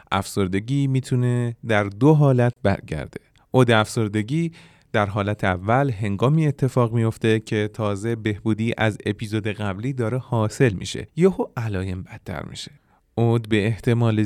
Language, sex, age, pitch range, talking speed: Persian, male, 30-49, 100-130 Hz, 125 wpm